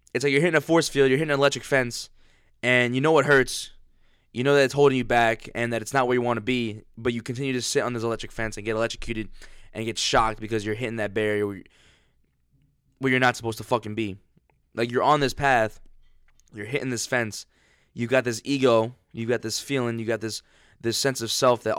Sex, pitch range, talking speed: male, 100-120 Hz, 235 wpm